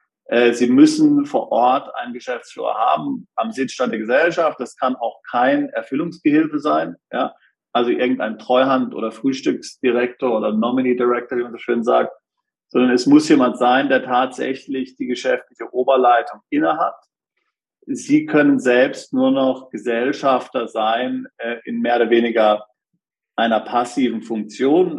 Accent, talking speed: German, 135 wpm